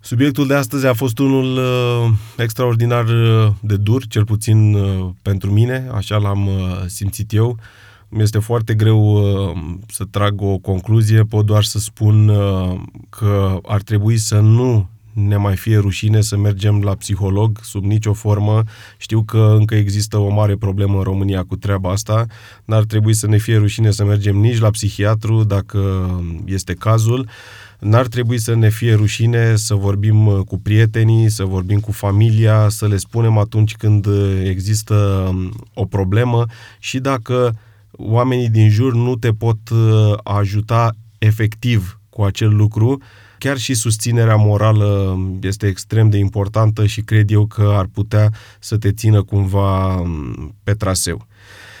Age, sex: 30-49, male